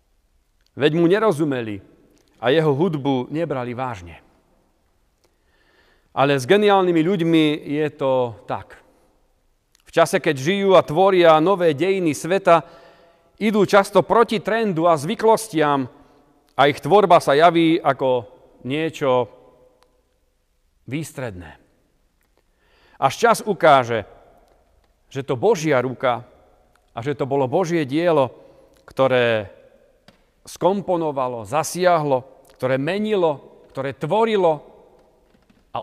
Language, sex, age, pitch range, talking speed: Slovak, male, 40-59, 130-180 Hz, 100 wpm